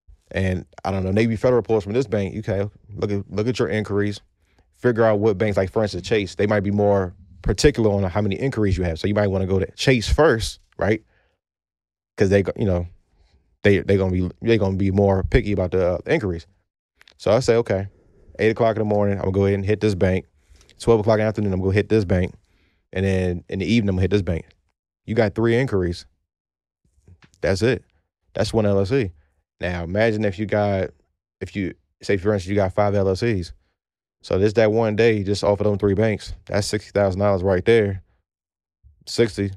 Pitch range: 90-105 Hz